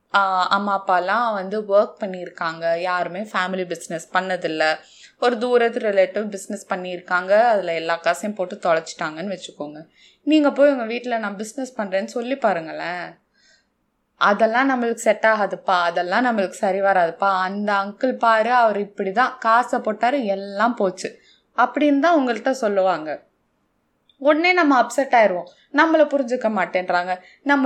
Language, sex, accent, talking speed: Tamil, female, native, 130 wpm